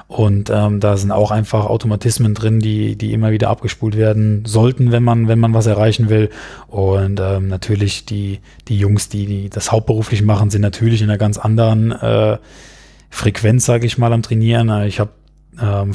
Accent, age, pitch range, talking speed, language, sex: German, 20-39, 105-115 Hz, 185 wpm, German, male